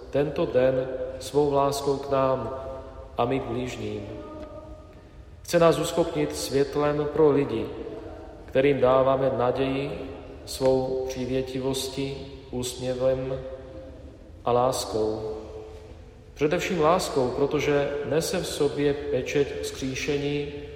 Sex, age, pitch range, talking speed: male, 40-59, 120-145 Hz, 90 wpm